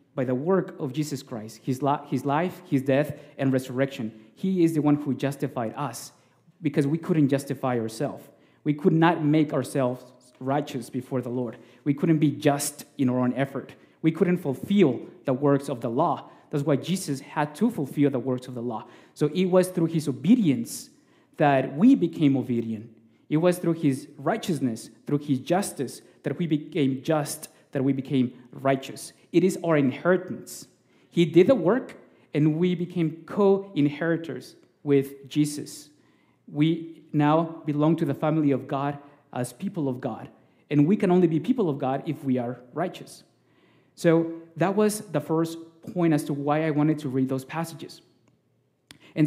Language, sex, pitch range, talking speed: English, male, 135-165 Hz, 170 wpm